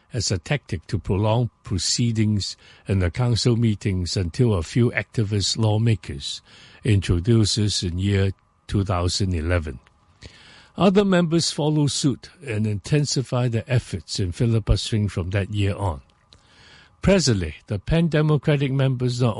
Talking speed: 120 wpm